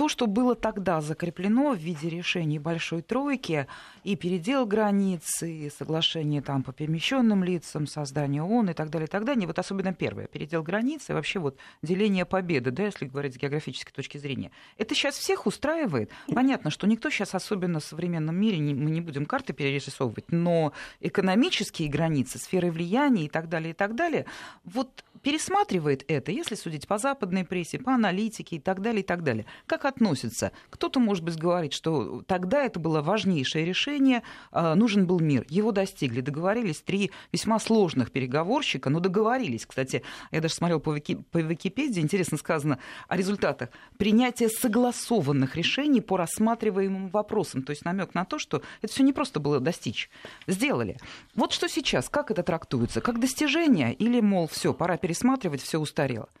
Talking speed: 165 wpm